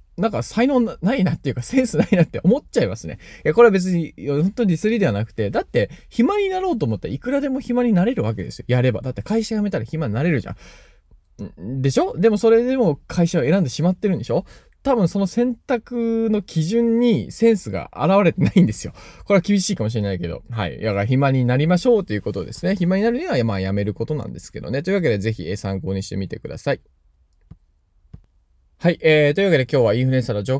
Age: 20-39